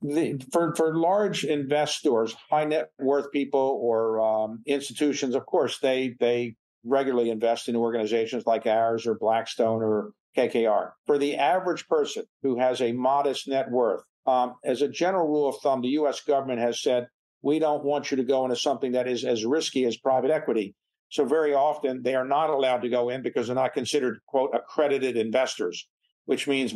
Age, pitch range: 50-69, 120-140 Hz